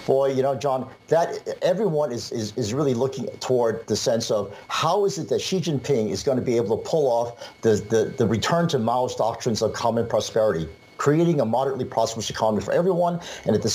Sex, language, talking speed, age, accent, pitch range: male, English, 215 wpm, 50-69, American, 110-140 Hz